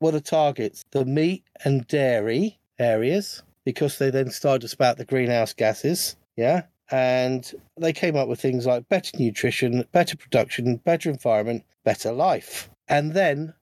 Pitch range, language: 130-160 Hz, English